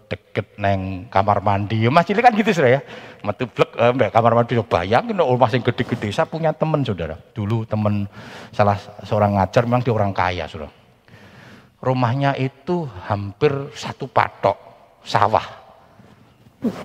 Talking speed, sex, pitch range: 130 wpm, male, 110-185 Hz